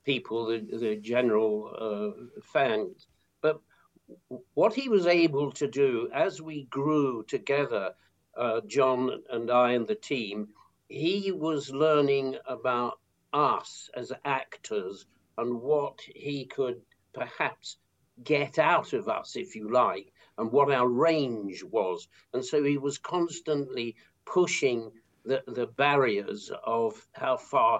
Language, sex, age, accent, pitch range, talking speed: English, male, 50-69, British, 120-150 Hz, 130 wpm